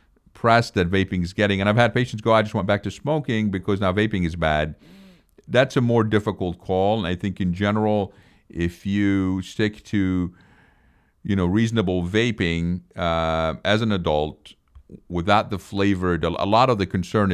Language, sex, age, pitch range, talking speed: English, male, 50-69, 80-100 Hz, 175 wpm